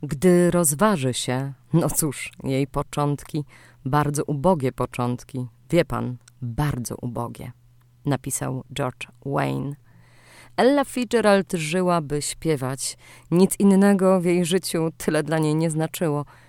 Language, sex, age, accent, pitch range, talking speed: Polish, female, 20-39, native, 135-185 Hz, 115 wpm